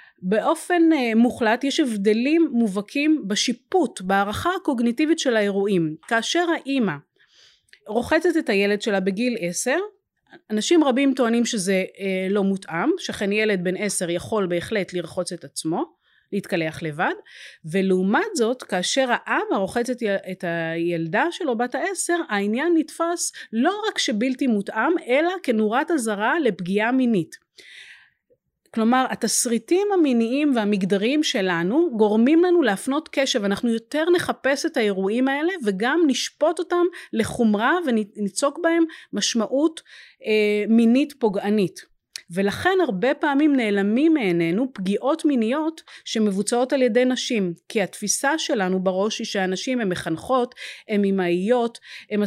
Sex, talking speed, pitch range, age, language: female, 120 wpm, 200-290 Hz, 30-49, Hebrew